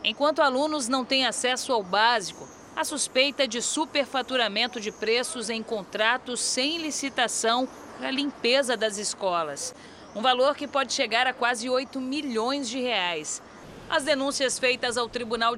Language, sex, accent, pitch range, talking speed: Portuguese, female, Brazilian, 220-260 Hz, 145 wpm